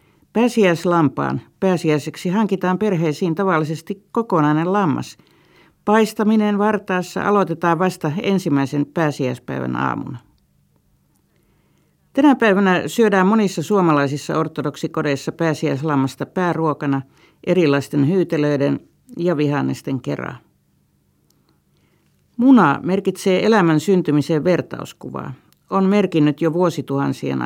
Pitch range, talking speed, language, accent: 145-190 Hz, 80 wpm, Finnish, native